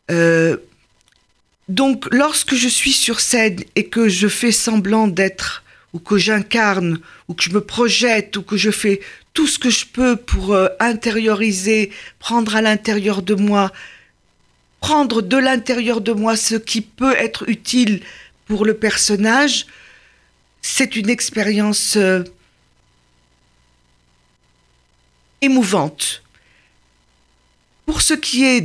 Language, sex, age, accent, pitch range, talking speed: French, female, 50-69, French, 195-245 Hz, 125 wpm